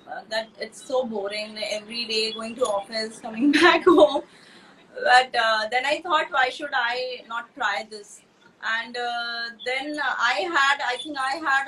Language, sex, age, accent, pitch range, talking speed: Hindi, female, 20-39, native, 230-300 Hz, 170 wpm